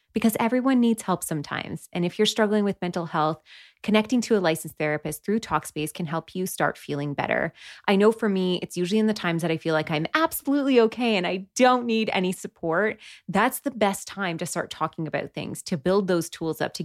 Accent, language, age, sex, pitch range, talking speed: American, English, 20-39, female, 170-215 Hz, 220 wpm